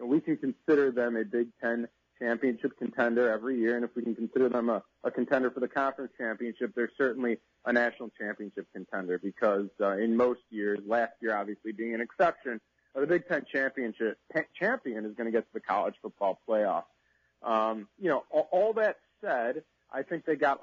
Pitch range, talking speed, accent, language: 115-140 Hz, 195 wpm, American, English